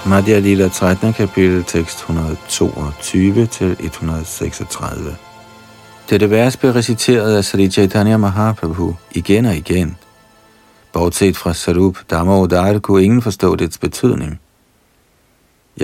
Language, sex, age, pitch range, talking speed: Danish, male, 50-69, 85-105 Hz, 100 wpm